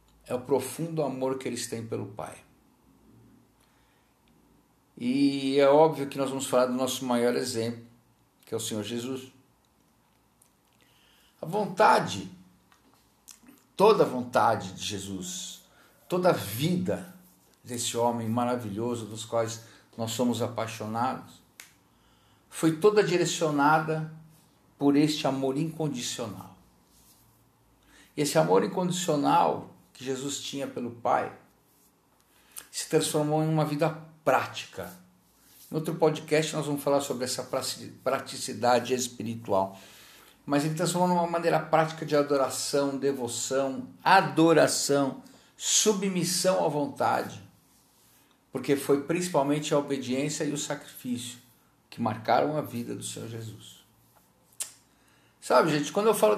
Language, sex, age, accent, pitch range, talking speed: Portuguese, male, 50-69, Brazilian, 120-155 Hz, 115 wpm